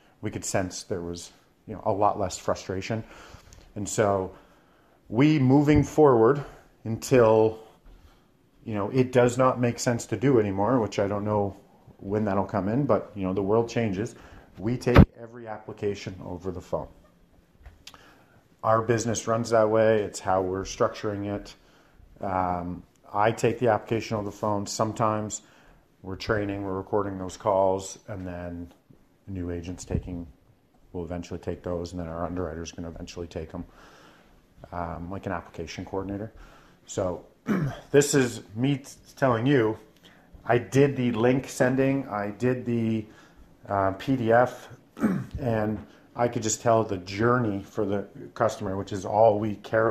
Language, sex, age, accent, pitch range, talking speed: English, male, 40-59, American, 95-115 Hz, 155 wpm